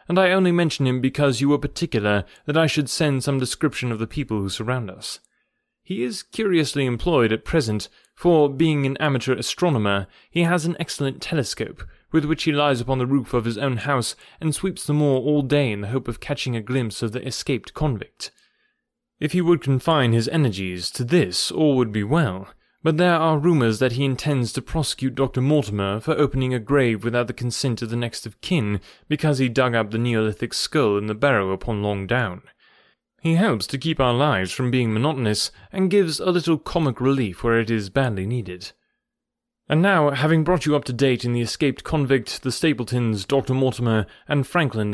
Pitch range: 120-155 Hz